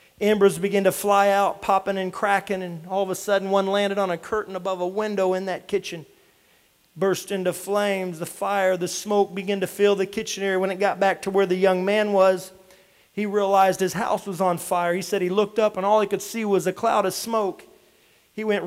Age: 40-59